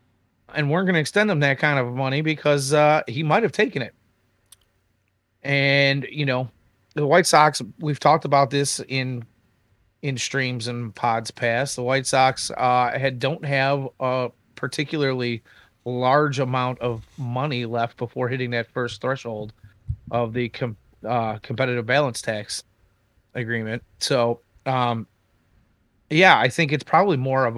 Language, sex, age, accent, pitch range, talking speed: English, male, 30-49, American, 115-145 Hz, 150 wpm